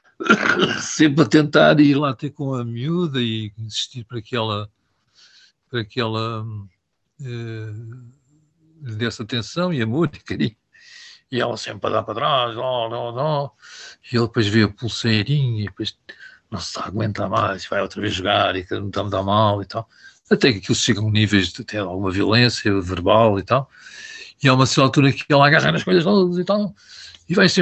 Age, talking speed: 60-79, 195 wpm